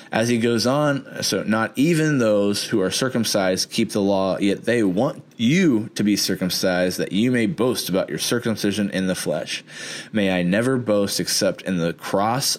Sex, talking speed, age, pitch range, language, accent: male, 185 wpm, 20-39, 95-120 Hz, English, American